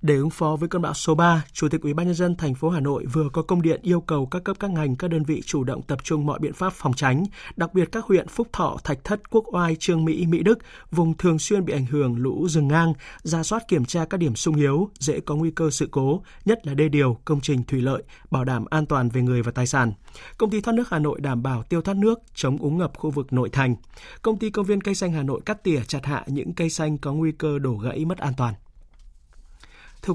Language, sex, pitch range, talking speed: Vietnamese, male, 140-175 Hz, 270 wpm